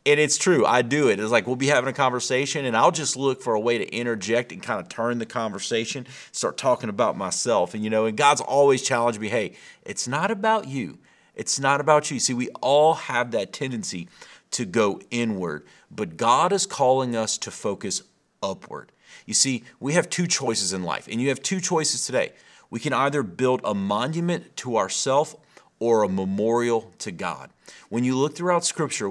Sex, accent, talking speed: male, American, 205 wpm